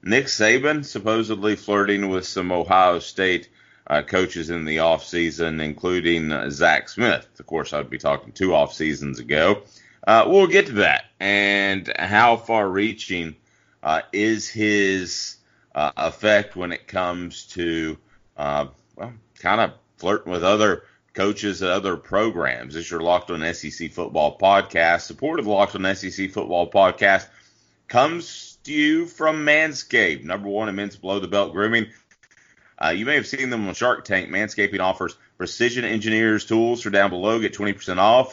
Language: English